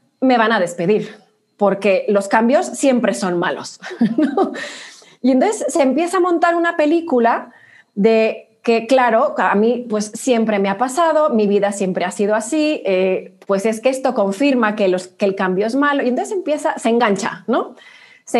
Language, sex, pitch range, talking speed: Spanish, female, 205-270 Hz, 170 wpm